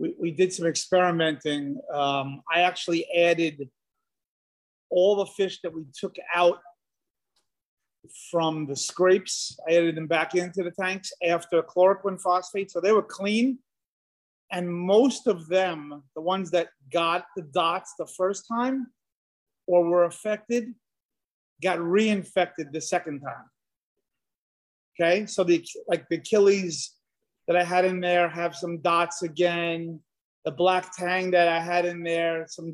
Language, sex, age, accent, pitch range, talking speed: English, male, 30-49, American, 165-195 Hz, 145 wpm